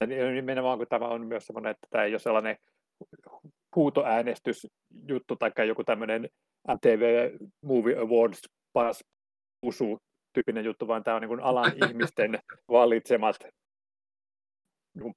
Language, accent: Finnish, native